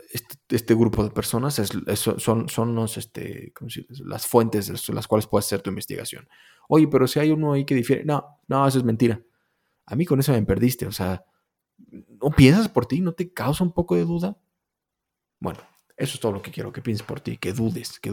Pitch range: 115-145 Hz